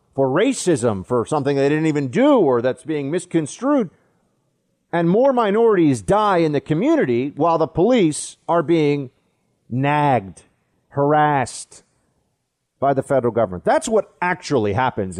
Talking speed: 135 wpm